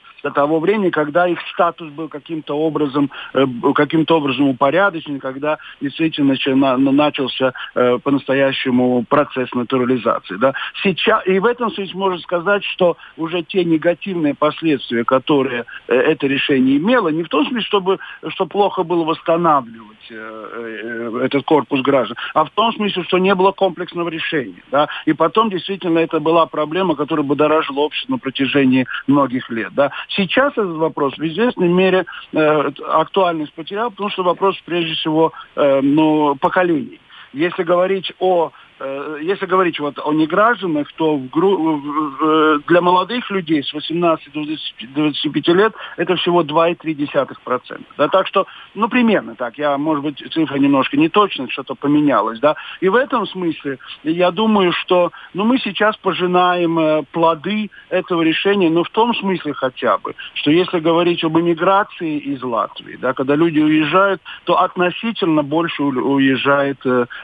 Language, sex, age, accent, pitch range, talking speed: Russian, male, 50-69, native, 140-185 Hz, 135 wpm